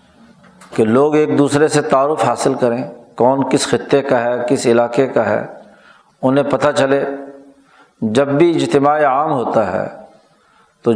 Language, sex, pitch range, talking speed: Urdu, male, 125-145 Hz, 150 wpm